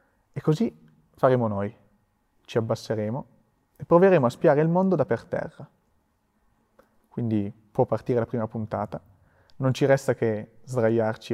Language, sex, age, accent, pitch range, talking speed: Italian, male, 30-49, native, 110-160 Hz, 140 wpm